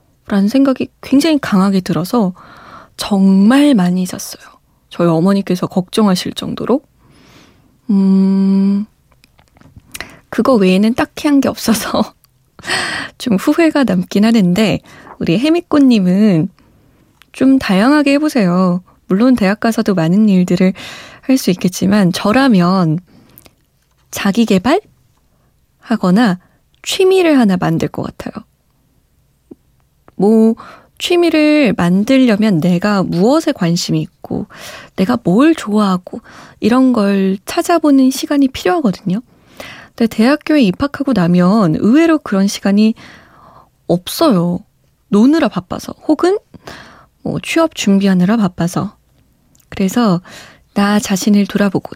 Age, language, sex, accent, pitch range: 20-39, Korean, female, native, 190-270 Hz